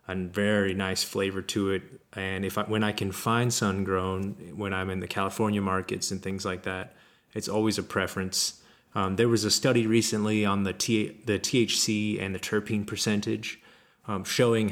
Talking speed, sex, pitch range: 190 wpm, male, 95-110 Hz